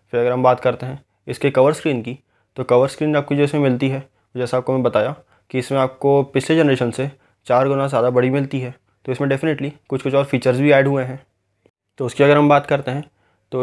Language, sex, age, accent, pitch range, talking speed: Hindi, male, 20-39, native, 125-140 Hz, 235 wpm